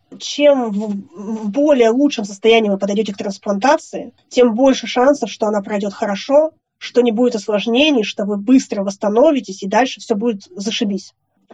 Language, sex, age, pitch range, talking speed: Russian, female, 20-39, 210-250 Hz, 150 wpm